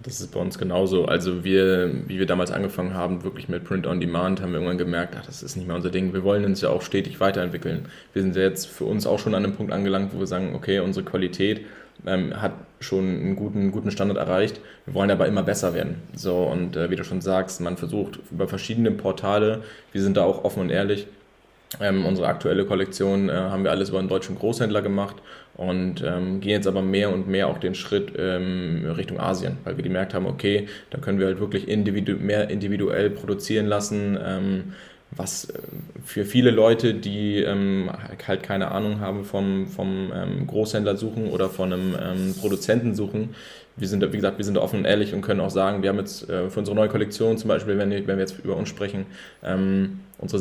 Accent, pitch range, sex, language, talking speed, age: German, 95-105 Hz, male, German, 210 wpm, 20-39